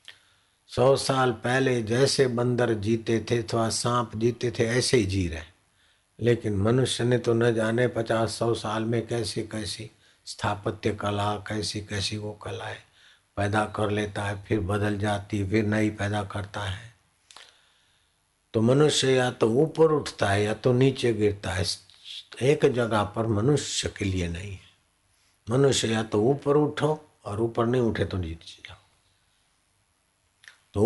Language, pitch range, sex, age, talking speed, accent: Hindi, 100-115 Hz, male, 60-79, 150 wpm, native